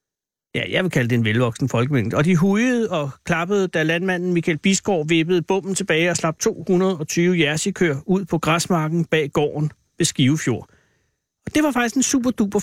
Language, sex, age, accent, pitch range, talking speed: Danish, male, 60-79, native, 155-200 Hz, 175 wpm